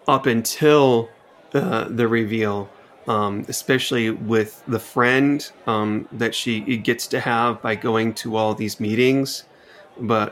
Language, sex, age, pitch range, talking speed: English, male, 30-49, 110-130 Hz, 135 wpm